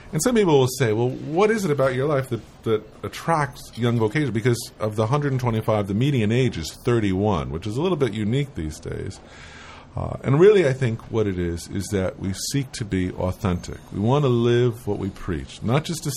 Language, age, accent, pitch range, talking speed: English, 50-69, American, 95-135 Hz, 220 wpm